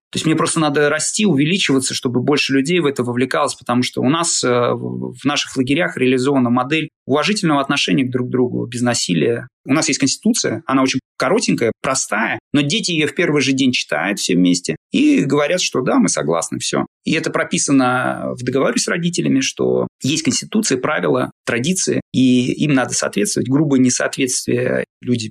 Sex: male